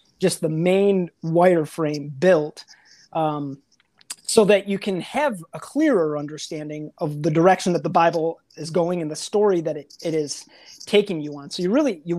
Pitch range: 160-200 Hz